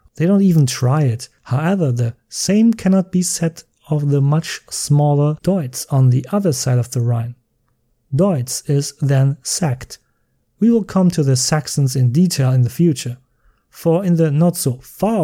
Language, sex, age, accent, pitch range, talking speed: English, male, 30-49, German, 125-160 Hz, 175 wpm